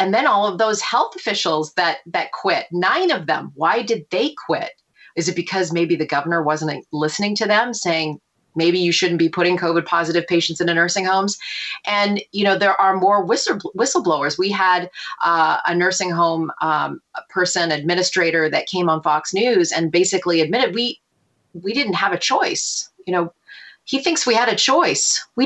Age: 30-49